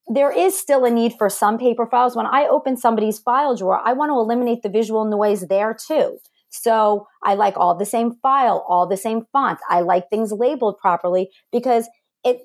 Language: English